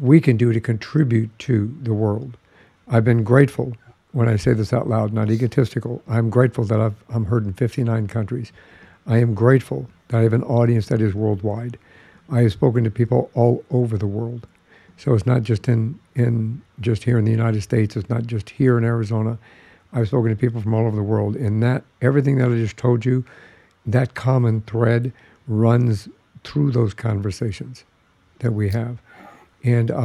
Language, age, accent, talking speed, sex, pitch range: English, 60-79, American, 190 wpm, male, 110-125 Hz